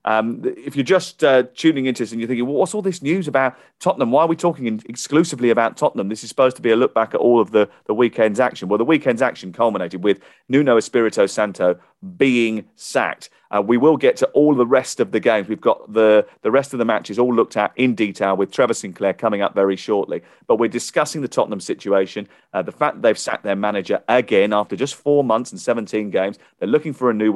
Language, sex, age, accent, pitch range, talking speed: English, male, 40-59, British, 105-135 Hz, 235 wpm